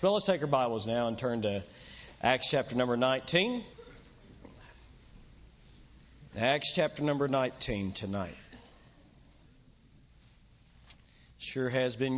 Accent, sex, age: American, male, 40-59